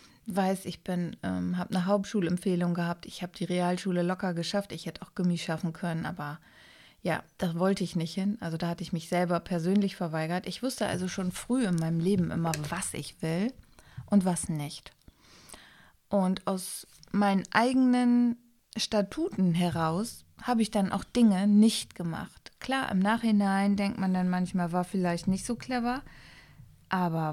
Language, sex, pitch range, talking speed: German, female, 175-215 Hz, 165 wpm